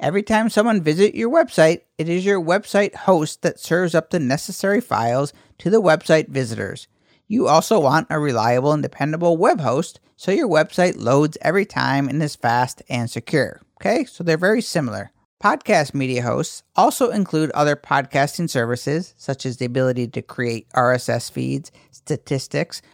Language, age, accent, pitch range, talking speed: English, 50-69, American, 130-170 Hz, 165 wpm